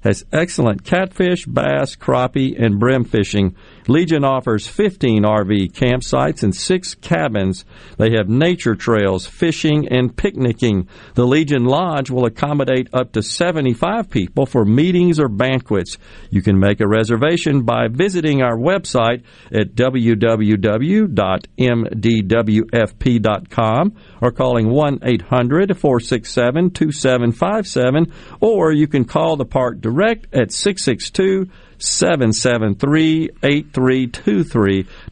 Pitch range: 110-150 Hz